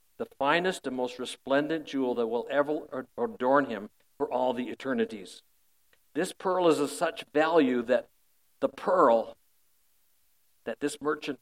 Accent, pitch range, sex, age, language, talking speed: American, 125-165 Hz, male, 60-79, English, 140 wpm